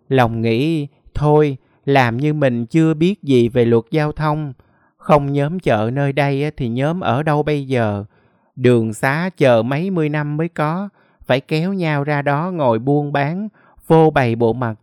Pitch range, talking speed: 120-155 Hz, 180 wpm